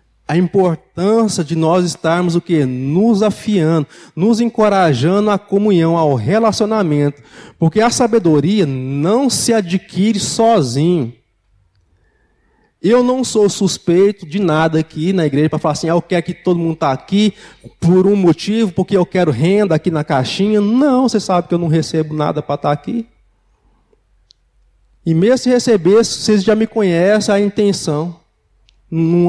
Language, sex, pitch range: Portuguese, male, 155-205 Hz